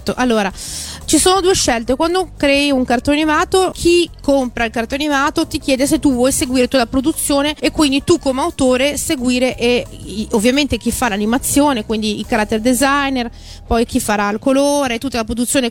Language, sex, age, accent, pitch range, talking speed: Italian, female, 30-49, native, 220-270 Hz, 180 wpm